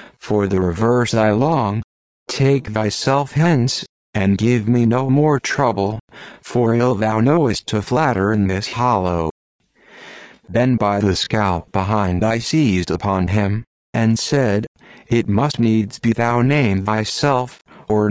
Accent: American